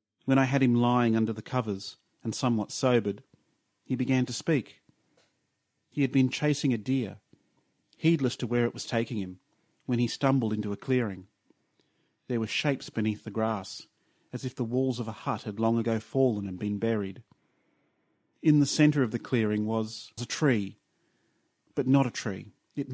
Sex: male